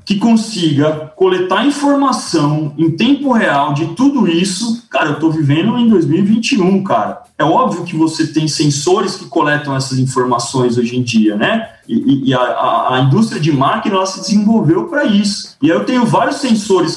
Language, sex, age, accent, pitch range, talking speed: Portuguese, male, 20-39, Brazilian, 160-225 Hz, 175 wpm